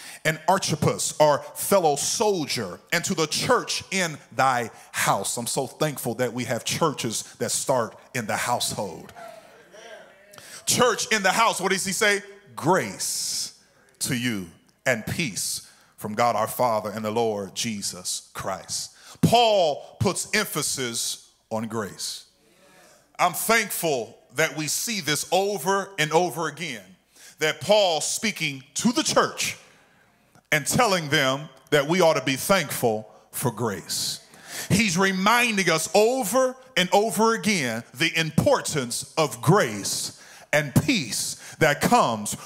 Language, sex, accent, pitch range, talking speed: English, male, American, 130-200 Hz, 130 wpm